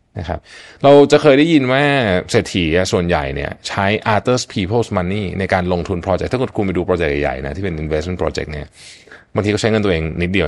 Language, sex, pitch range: Thai, male, 90-110 Hz